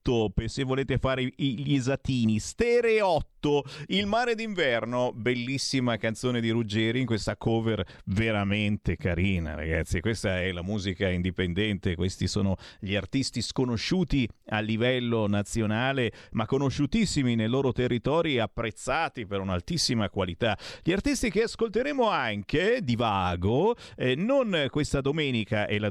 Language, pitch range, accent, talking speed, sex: Italian, 110-175 Hz, native, 125 wpm, male